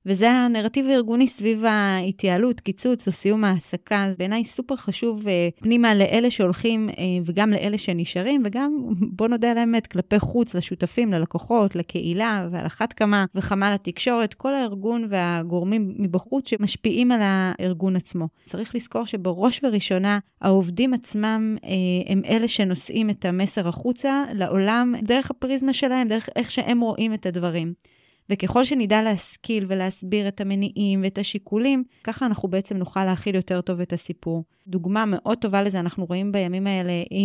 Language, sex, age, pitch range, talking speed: Hebrew, female, 20-39, 185-230 Hz, 150 wpm